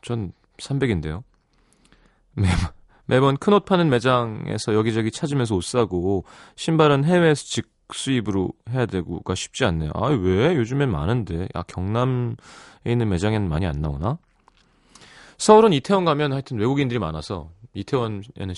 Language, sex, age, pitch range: Korean, male, 30-49, 95-155 Hz